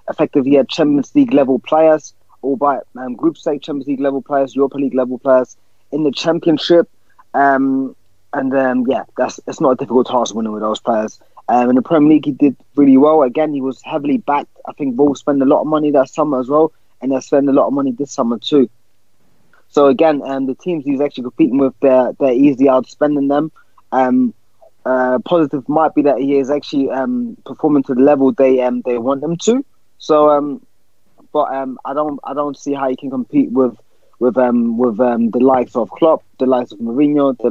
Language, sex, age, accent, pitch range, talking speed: English, male, 20-39, British, 125-145 Hz, 220 wpm